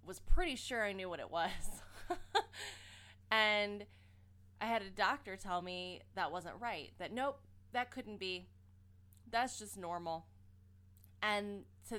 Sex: female